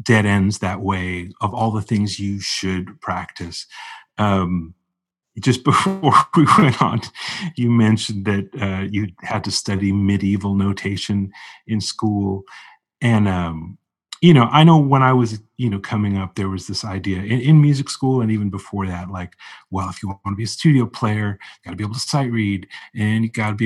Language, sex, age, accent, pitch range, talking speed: English, male, 30-49, American, 100-125 Hz, 190 wpm